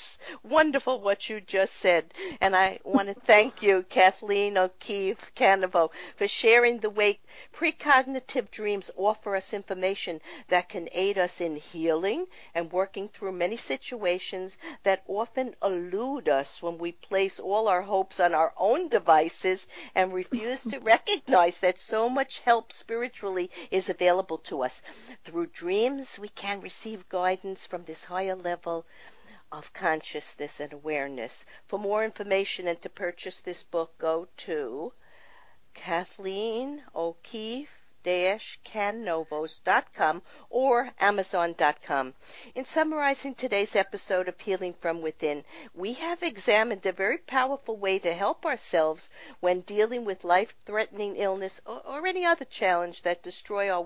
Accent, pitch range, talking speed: American, 175-235 Hz, 135 wpm